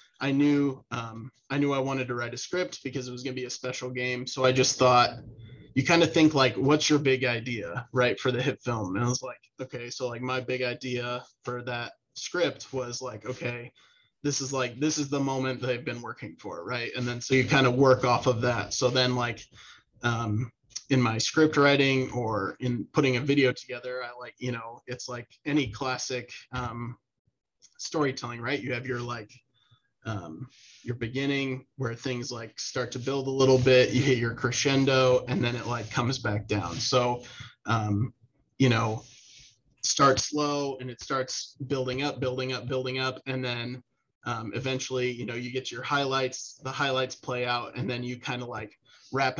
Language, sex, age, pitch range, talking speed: English, male, 20-39, 120-135 Hz, 200 wpm